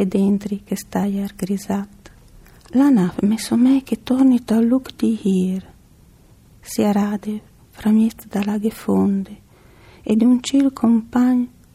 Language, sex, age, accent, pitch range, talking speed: Italian, female, 40-59, native, 185-230 Hz, 130 wpm